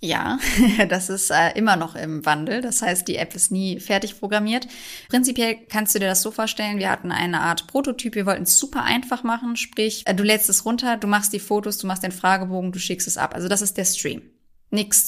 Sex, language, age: female, German, 20-39